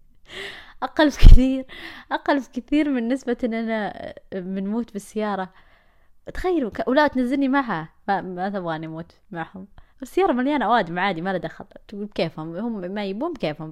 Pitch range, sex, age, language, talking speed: 175-250 Hz, female, 20-39, Arabic, 145 wpm